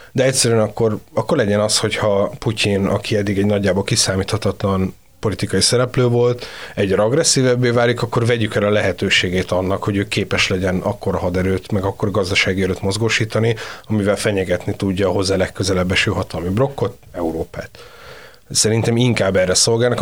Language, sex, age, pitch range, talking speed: Hungarian, male, 30-49, 95-115 Hz, 150 wpm